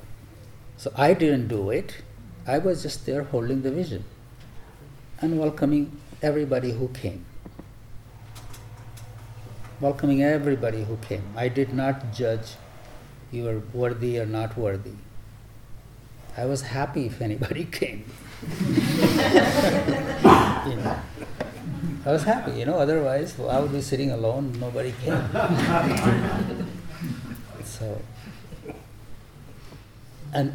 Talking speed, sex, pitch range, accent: 110 wpm, male, 110-140 Hz, Indian